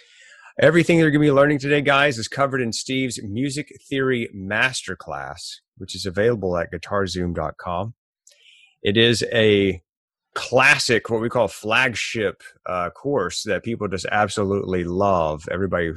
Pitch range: 95-125 Hz